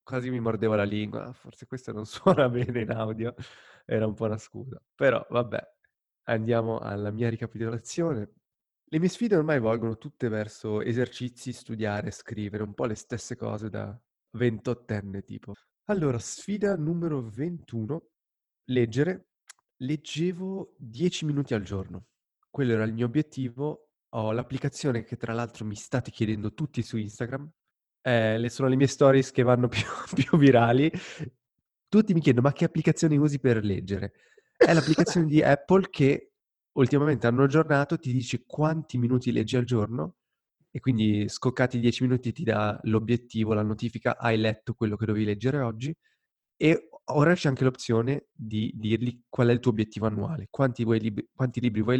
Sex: male